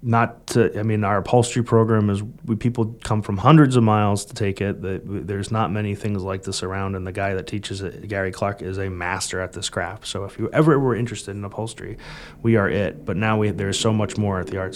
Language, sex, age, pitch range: English, male, 30-49, 100-115 Hz